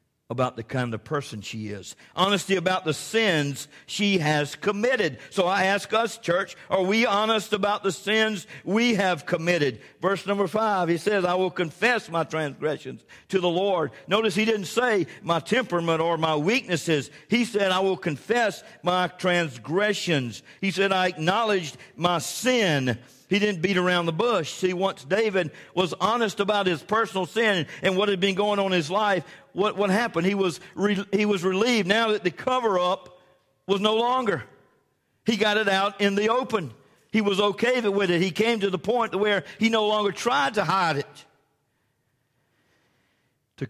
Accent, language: American, English